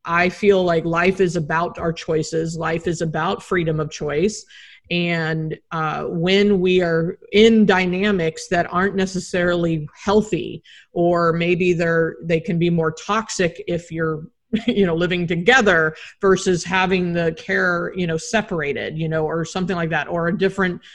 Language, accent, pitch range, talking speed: English, American, 160-190 Hz, 160 wpm